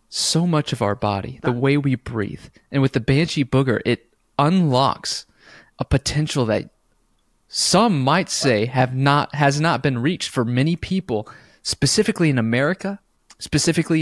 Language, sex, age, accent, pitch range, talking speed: English, male, 30-49, American, 125-165 Hz, 150 wpm